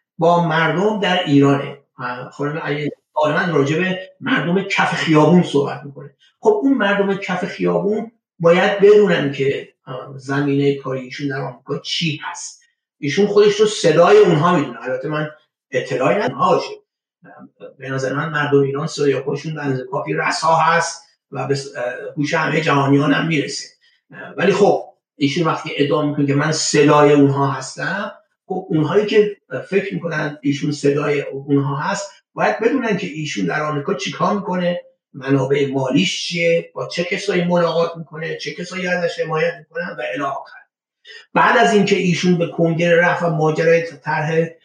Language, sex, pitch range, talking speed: Persian, male, 145-200 Hz, 145 wpm